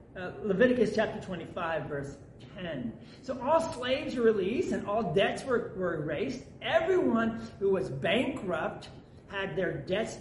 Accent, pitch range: American, 140-220 Hz